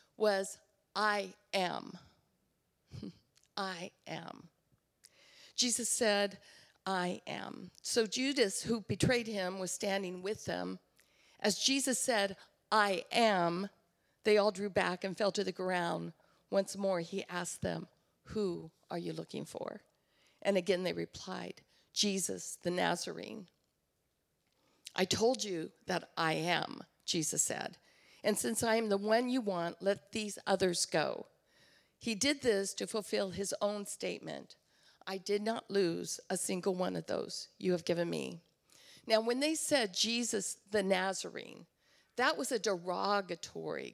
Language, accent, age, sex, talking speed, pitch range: English, American, 50-69, female, 140 wpm, 185-220 Hz